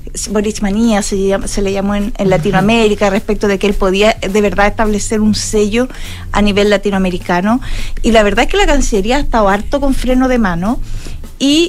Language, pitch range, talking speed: Spanish, 205-245 Hz, 175 wpm